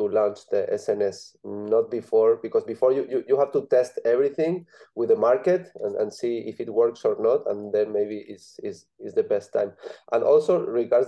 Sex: male